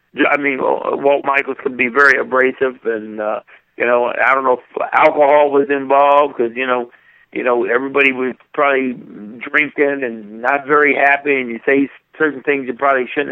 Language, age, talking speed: English, 60-79, 175 wpm